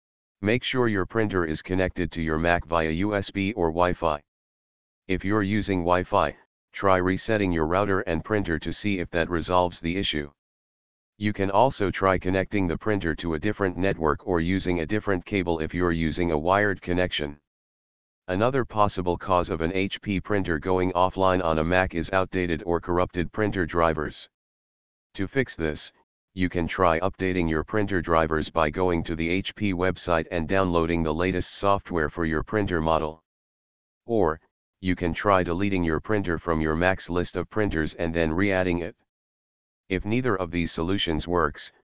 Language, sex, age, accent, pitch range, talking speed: English, male, 40-59, American, 85-100 Hz, 170 wpm